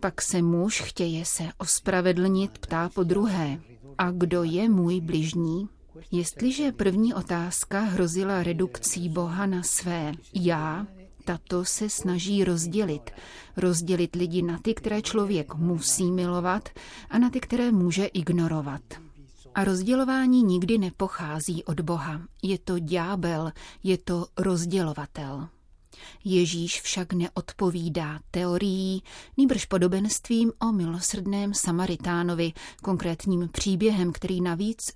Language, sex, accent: Czech, female, native